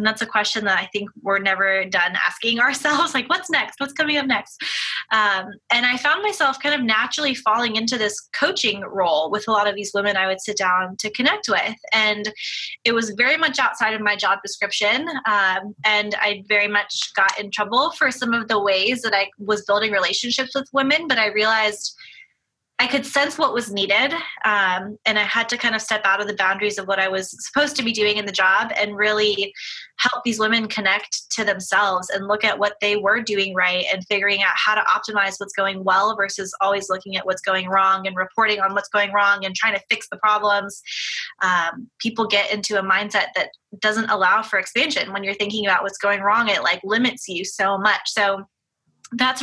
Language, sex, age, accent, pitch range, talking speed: English, female, 20-39, American, 195-230 Hz, 215 wpm